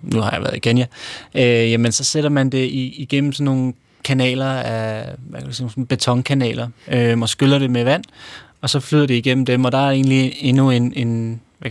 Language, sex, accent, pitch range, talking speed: Danish, male, native, 115-130 Hz, 220 wpm